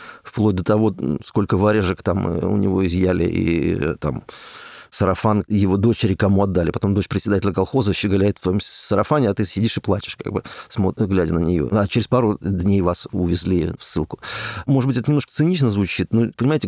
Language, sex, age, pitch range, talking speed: Russian, male, 30-49, 95-115 Hz, 185 wpm